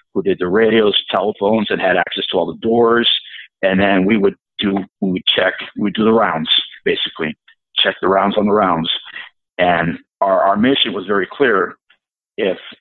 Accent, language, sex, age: American, English, male, 50-69